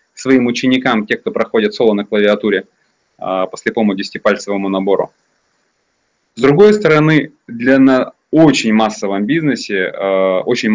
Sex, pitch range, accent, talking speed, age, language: male, 110-160 Hz, native, 115 wpm, 20-39, Russian